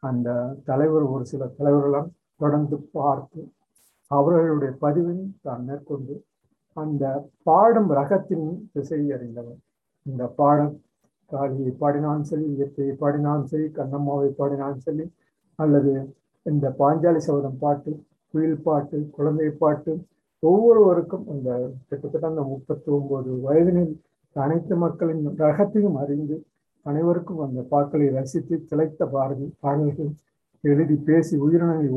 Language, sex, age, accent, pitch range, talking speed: Tamil, male, 50-69, native, 140-160 Hz, 60 wpm